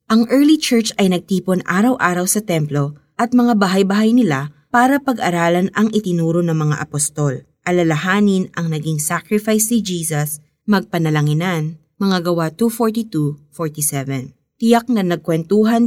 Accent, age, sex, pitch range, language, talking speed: native, 20-39, female, 155-205 Hz, Filipino, 120 wpm